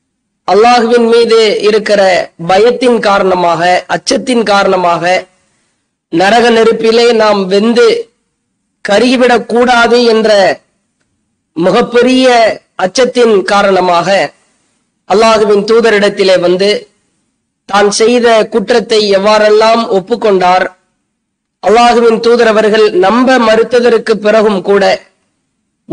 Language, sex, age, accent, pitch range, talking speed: English, female, 20-39, Indian, 205-245 Hz, 65 wpm